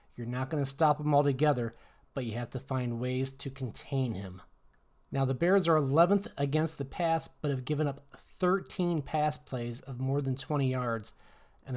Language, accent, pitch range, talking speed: English, American, 125-150 Hz, 190 wpm